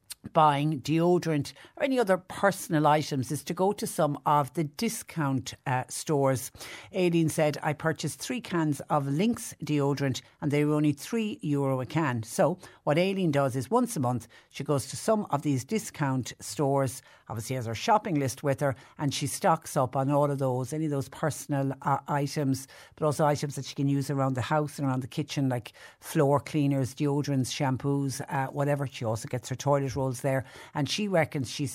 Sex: female